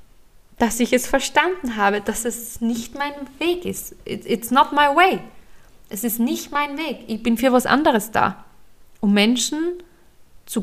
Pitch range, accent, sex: 195-255 Hz, German, female